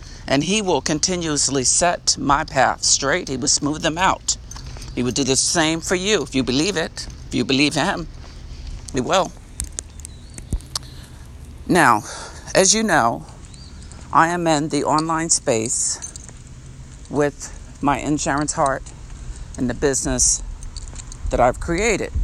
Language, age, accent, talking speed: English, 50-69, American, 135 wpm